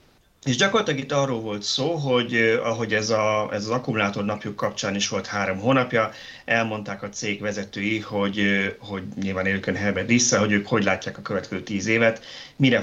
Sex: male